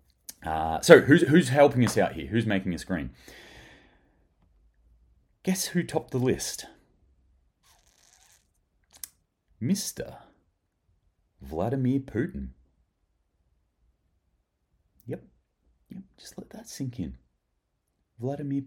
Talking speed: 90 wpm